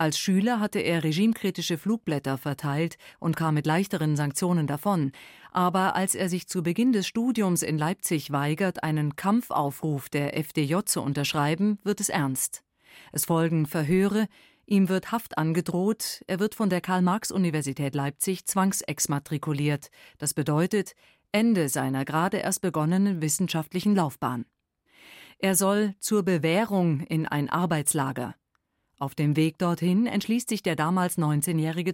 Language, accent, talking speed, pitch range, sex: German, German, 135 wpm, 155-200 Hz, female